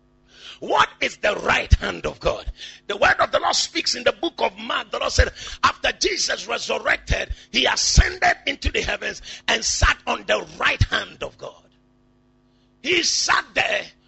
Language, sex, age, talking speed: English, male, 50-69, 170 wpm